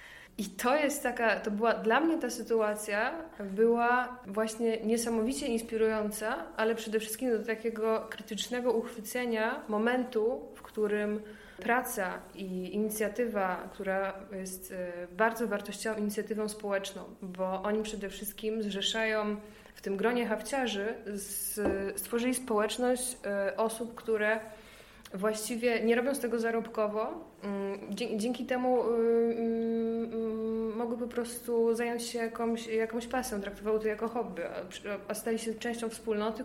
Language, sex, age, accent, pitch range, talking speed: Polish, female, 20-39, native, 205-230 Hz, 115 wpm